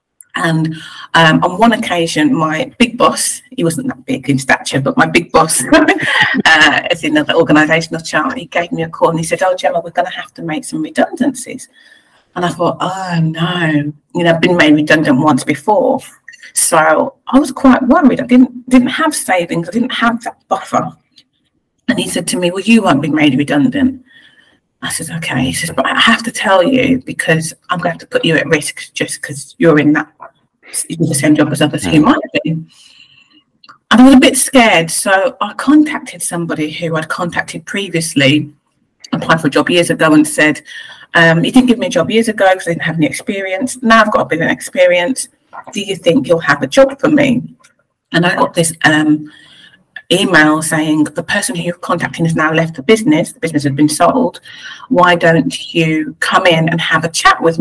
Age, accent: 40-59, British